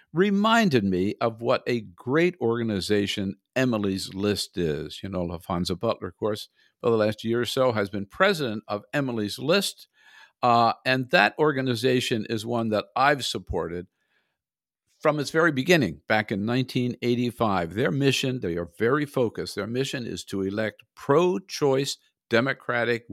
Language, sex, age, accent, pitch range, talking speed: English, male, 60-79, American, 100-135 Hz, 150 wpm